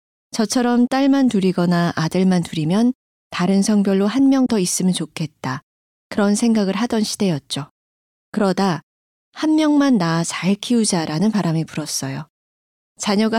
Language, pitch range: Korean, 170-230 Hz